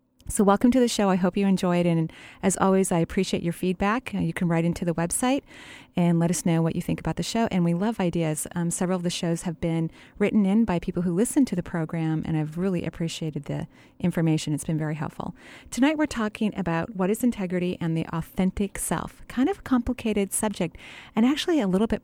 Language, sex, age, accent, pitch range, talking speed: English, female, 30-49, American, 165-195 Hz, 230 wpm